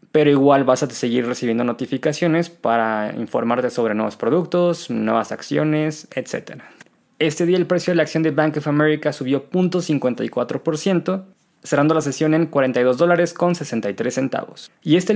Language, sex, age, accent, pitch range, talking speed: Spanish, male, 20-39, Mexican, 135-165 Hz, 140 wpm